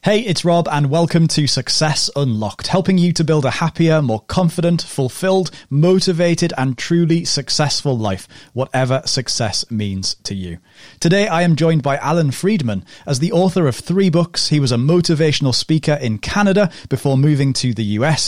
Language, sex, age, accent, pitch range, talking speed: English, male, 30-49, British, 120-165 Hz, 170 wpm